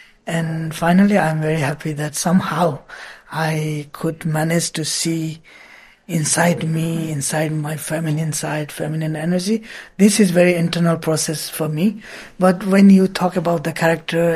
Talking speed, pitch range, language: 140 wpm, 160-180 Hz, English